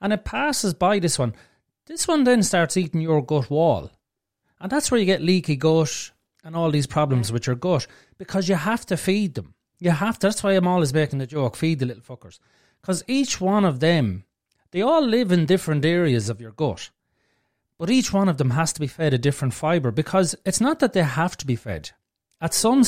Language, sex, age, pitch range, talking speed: English, male, 30-49, 130-185 Hz, 225 wpm